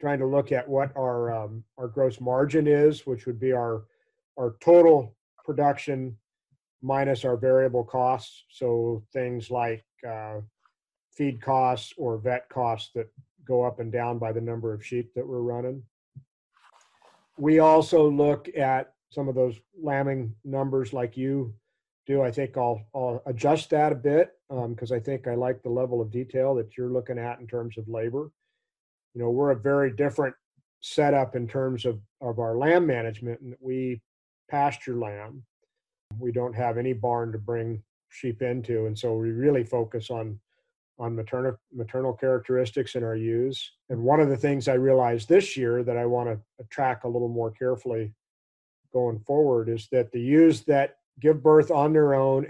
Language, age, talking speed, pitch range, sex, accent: English, 40-59, 175 wpm, 120-140 Hz, male, American